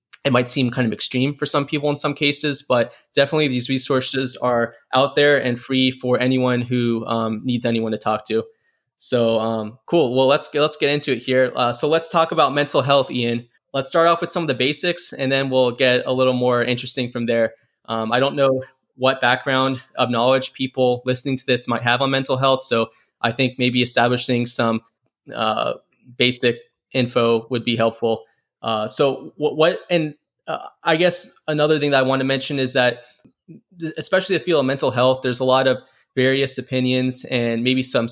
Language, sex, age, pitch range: English, male, 20-39, 120-140 Hz